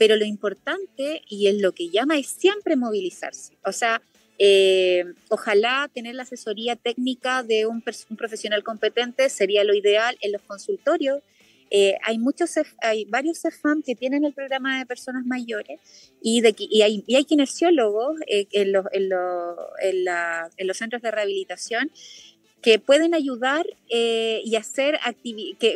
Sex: female